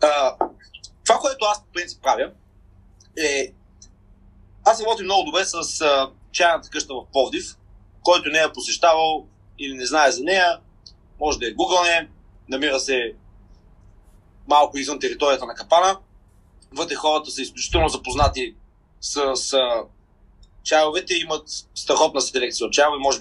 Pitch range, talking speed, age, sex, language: 100-165 Hz, 135 wpm, 30-49, male, Bulgarian